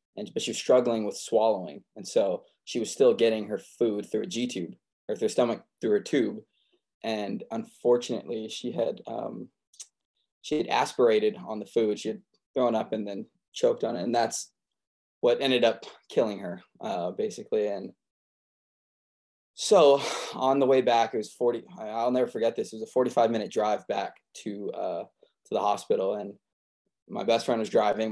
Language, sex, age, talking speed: English, male, 20-39, 175 wpm